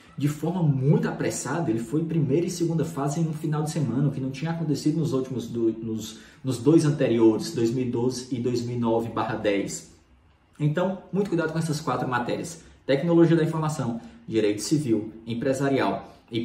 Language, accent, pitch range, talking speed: Portuguese, Brazilian, 125-170 Hz, 170 wpm